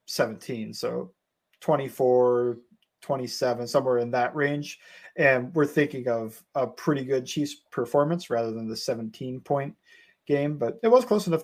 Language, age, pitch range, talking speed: English, 30-49, 125-160 Hz, 145 wpm